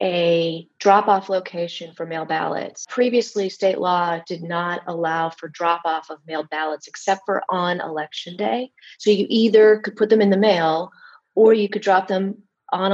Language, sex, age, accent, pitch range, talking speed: English, female, 30-49, American, 170-210 Hz, 170 wpm